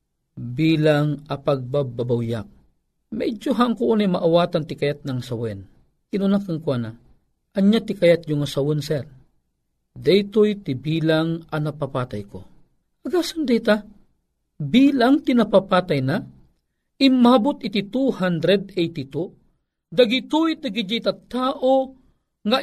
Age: 50-69